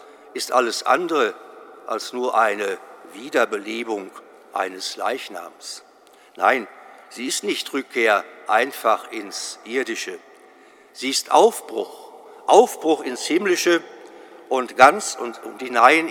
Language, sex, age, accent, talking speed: German, male, 60-79, German, 100 wpm